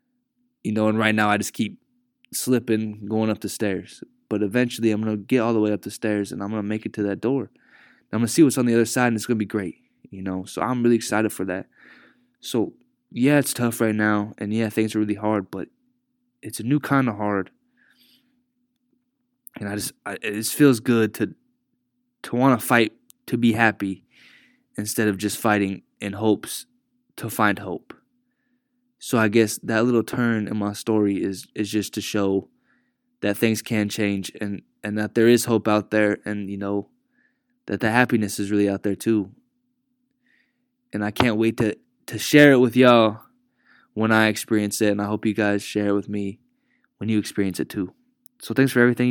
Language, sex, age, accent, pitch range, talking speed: English, male, 20-39, American, 105-145 Hz, 200 wpm